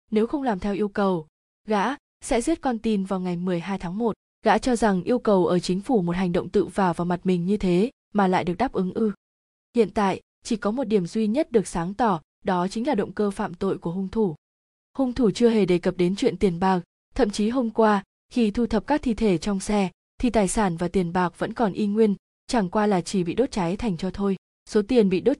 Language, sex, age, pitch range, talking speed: Vietnamese, female, 20-39, 185-225 Hz, 255 wpm